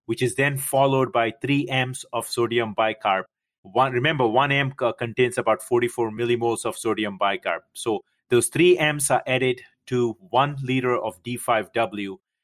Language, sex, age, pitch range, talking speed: English, male, 30-49, 115-135 Hz, 150 wpm